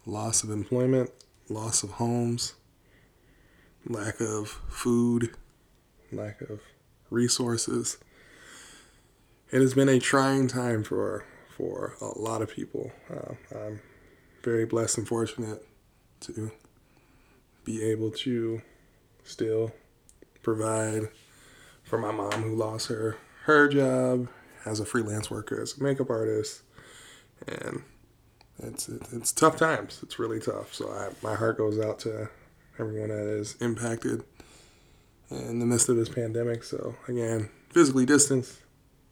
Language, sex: English, male